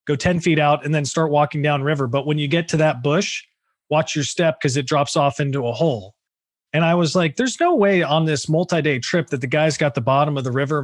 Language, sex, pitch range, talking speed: English, male, 140-165 Hz, 260 wpm